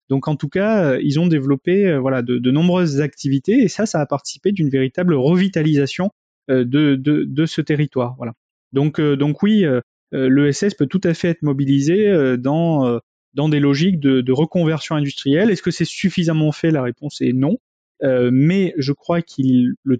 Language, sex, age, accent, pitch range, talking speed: French, male, 30-49, French, 130-165 Hz, 175 wpm